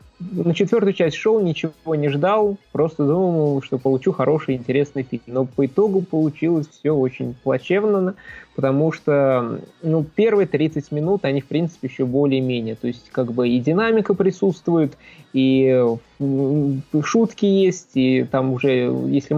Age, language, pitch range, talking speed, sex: 20-39, Russian, 130-165 Hz, 140 wpm, male